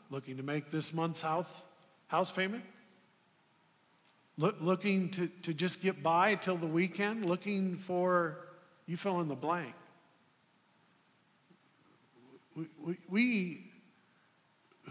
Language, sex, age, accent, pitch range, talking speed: English, male, 50-69, American, 165-200 Hz, 115 wpm